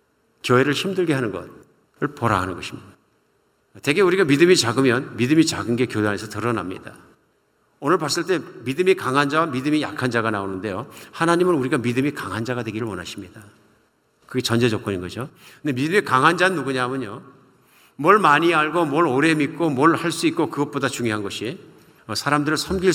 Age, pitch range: 50-69, 110-150 Hz